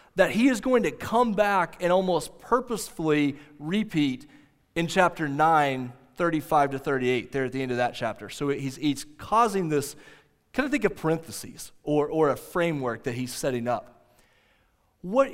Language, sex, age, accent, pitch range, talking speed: English, male, 30-49, American, 145-220 Hz, 165 wpm